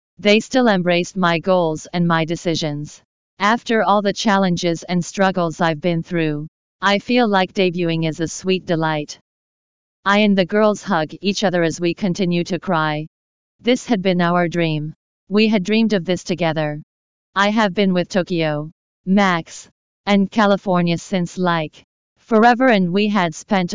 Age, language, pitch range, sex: 40-59, English, 165-200 Hz, female